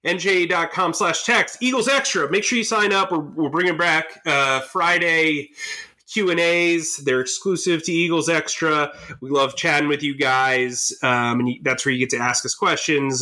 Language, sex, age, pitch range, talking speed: English, male, 30-49, 125-165 Hz, 175 wpm